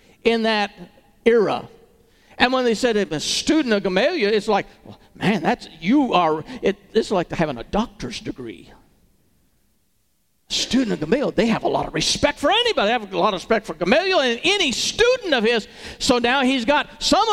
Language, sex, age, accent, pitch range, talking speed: English, male, 50-69, American, 205-335 Hz, 180 wpm